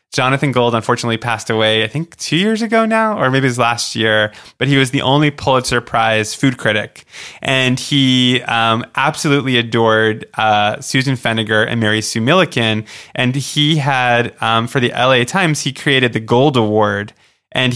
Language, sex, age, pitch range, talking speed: English, male, 20-39, 115-140 Hz, 175 wpm